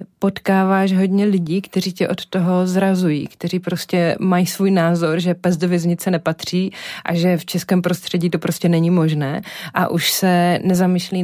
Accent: native